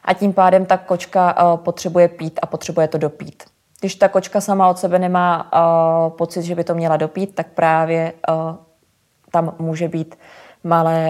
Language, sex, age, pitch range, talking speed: Czech, female, 20-39, 155-175 Hz, 160 wpm